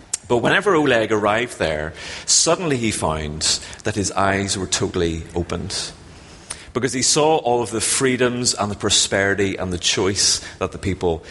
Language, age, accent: English, 30-49, British